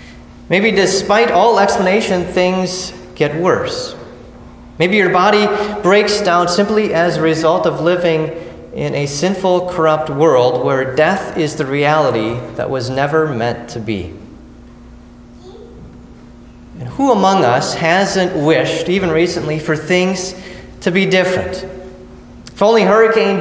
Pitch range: 155-200 Hz